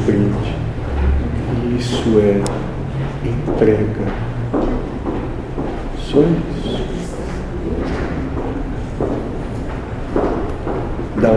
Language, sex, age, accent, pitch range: Portuguese, male, 40-59, Brazilian, 105-125 Hz